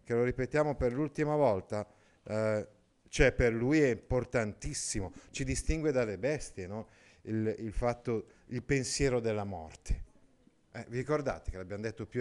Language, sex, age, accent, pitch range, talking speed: Italian, male, 50-69, native, 110-150 Hz, 150 wpm